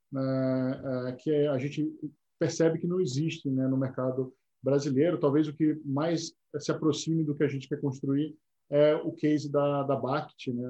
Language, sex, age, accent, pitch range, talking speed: Portuguese, male, 10-29, Brazilian, 130-150 Hz, 180 wpm